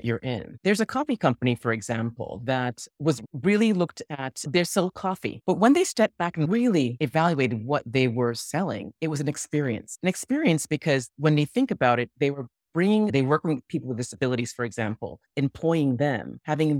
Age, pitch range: 30-49, 120-160 Hz